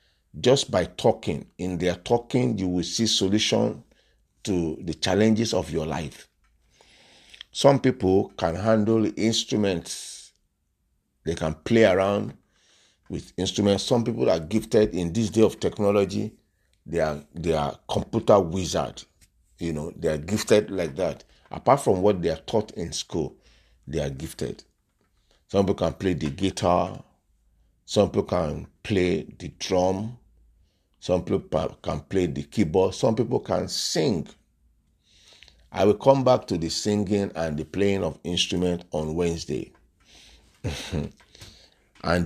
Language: English